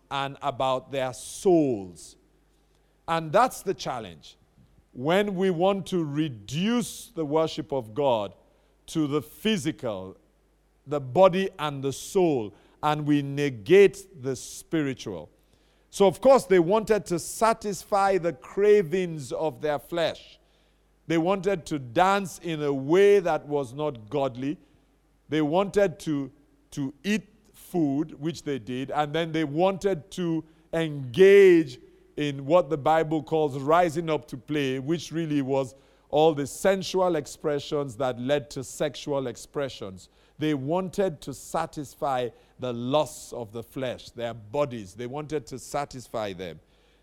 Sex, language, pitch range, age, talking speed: male, English, 140-180 Hz, 50-69, 135 wpm